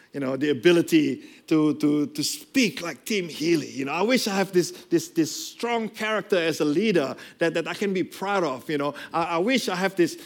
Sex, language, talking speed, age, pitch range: male, English, 230 wpm, 50-69, 150-230 Hz